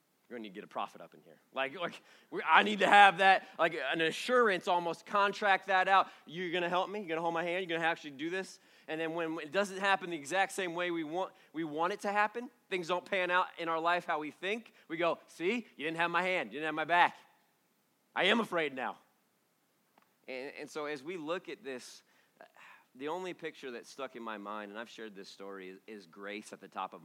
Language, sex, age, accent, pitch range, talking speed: English, male, 30-49, American, 115-195 Hz, 255 wpm